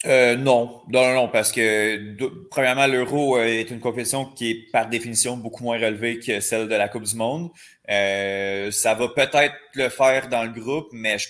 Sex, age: male, 30-49